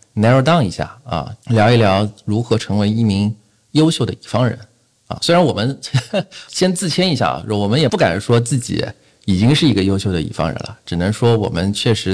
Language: Chinese